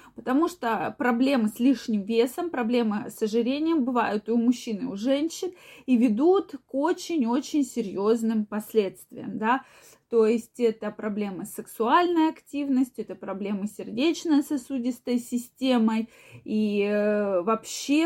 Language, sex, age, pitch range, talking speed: Russian, female, 20-39, 225-280 Hz, 125 wpm